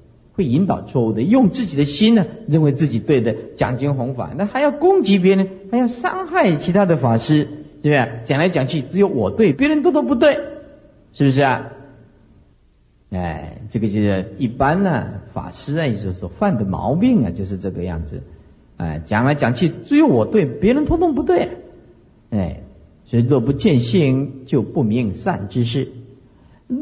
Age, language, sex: 50-69, Chinese, male